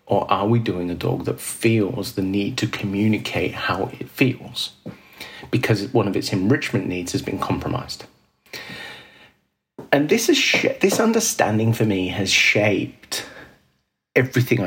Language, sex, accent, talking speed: English, male, British, 145 wpm